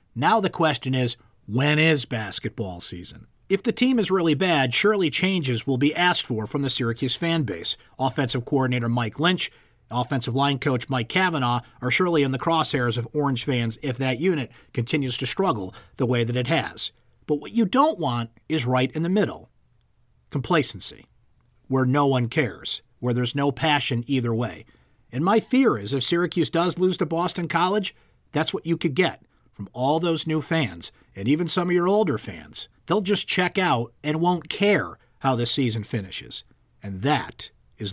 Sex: male